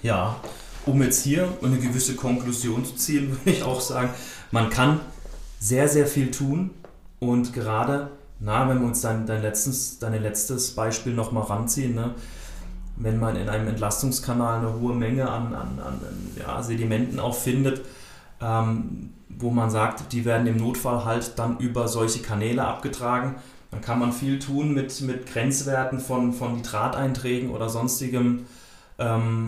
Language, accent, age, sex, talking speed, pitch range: German, German, 30-49, male, 145 wpm, 115-130 Hz